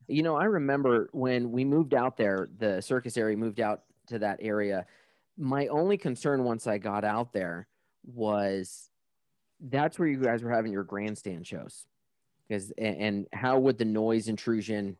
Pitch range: 110-150 Hz